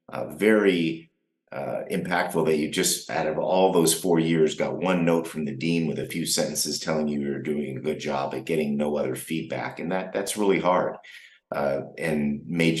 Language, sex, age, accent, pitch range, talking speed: English, male, 50-69, American, 75-90 Hz, 200 wpm